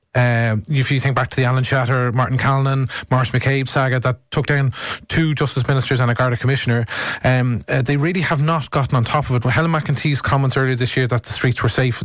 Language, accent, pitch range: English, Irish, 125-140 Hz